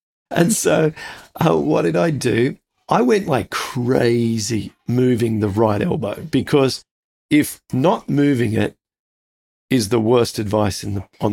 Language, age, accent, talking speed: English, 40-59, Australian, 130 wpm